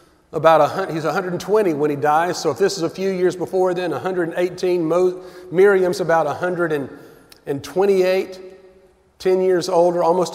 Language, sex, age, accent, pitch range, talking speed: English, male, 40-59, American, 150-190 Hz, 145 wpm